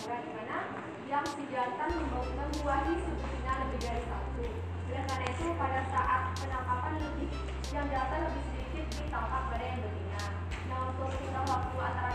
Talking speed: 135 wpm